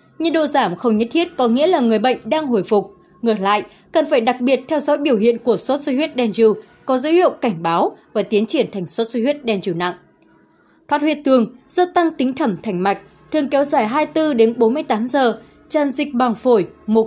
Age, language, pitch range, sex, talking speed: 20-39, Vietnamese, 220-295 Hz, female, 225 wpm